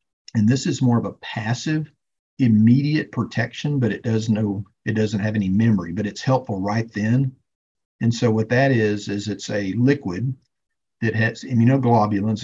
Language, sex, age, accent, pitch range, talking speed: English, male, 50-69, American, 100-125 Hz, 160 wpm